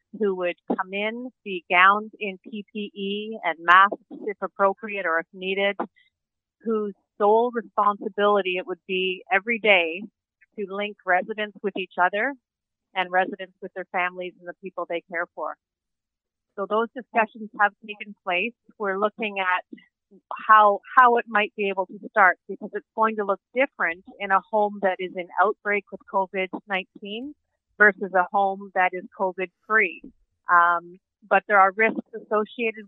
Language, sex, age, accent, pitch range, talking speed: English, female, 40-59, American, 185-215 Hz, 150 wpm